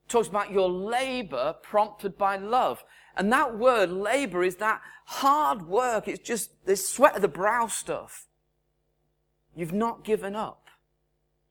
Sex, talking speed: male, 140 wpm